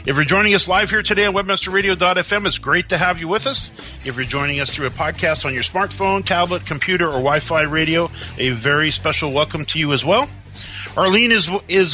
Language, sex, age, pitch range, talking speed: English, male, 40-59, 145-195 Hz, 210 wpm